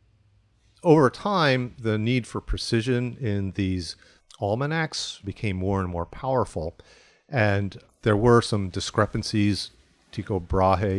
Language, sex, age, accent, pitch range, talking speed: English, male, 50-69, American, 90-105 Hz, 115 wpm